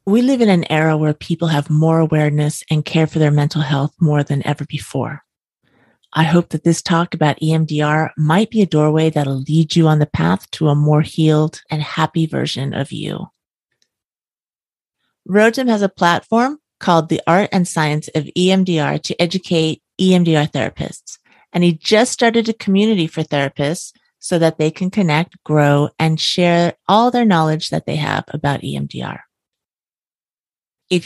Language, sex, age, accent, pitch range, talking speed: English, female, 40-59, American, 155-200 Hz, 165 wpm